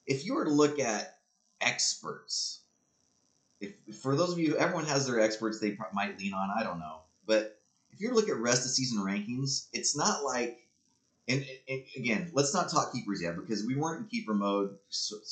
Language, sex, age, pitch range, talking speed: English, male, 30-49, 105-150 Hz, 210 wpm